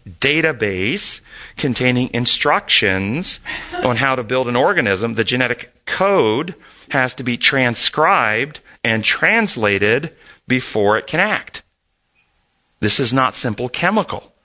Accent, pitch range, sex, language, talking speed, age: American, 125-170 Hz, male, English, 110 wpm, 40-59